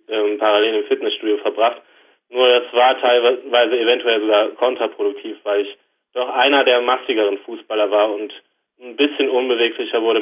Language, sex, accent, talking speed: German, male, German, 140 wpm